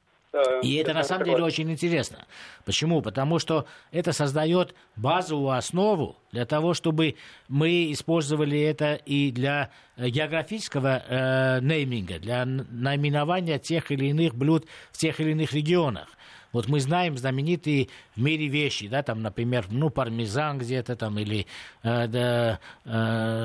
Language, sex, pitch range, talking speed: Russian, male, 130-155 Hz, 135 wpm